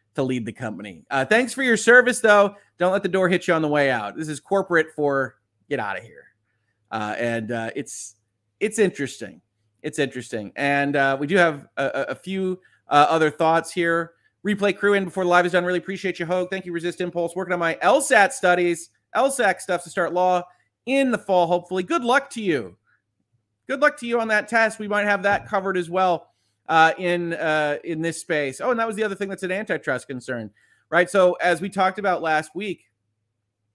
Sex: male